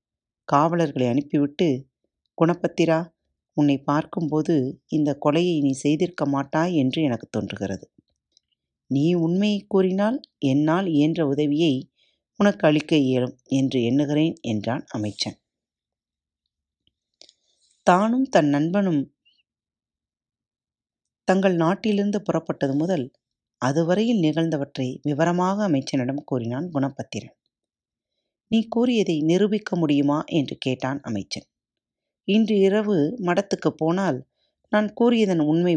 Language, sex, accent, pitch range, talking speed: Tamil, female, native, 135-180 Hz, 90 wpm